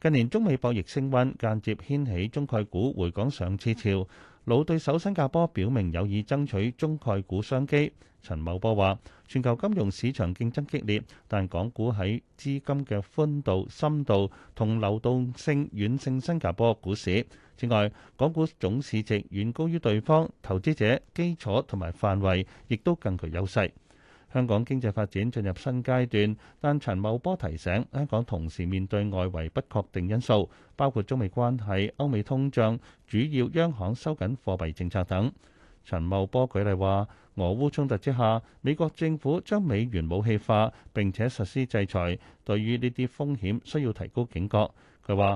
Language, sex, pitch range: Chinese, male, 100-135 Hz